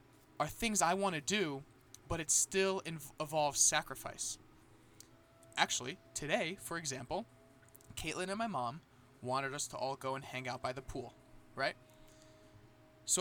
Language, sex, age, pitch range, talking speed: English, male, 20-39, 130-170 Hz, 145 wpm